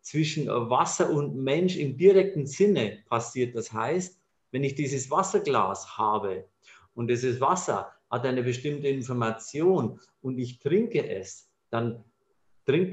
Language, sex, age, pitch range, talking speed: German, male, 50-69, 120-160 Hz, 130 wpm